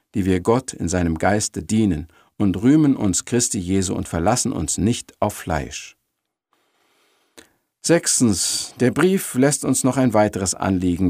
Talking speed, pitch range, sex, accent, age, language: 145 wpm, 90-130 Hz, male, German, 50-69, German